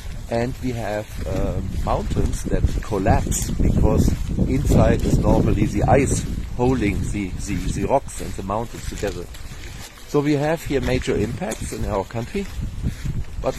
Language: Filipino